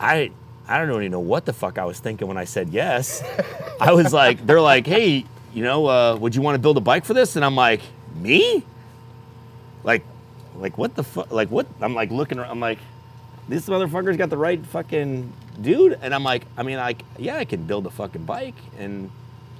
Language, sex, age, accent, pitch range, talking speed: English, male, 30-49, American, 110-135 Hz, 215 wpm